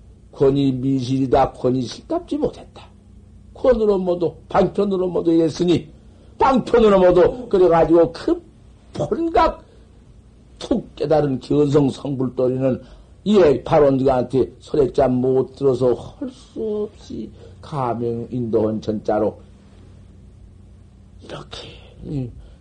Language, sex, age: Korean, male, 50-69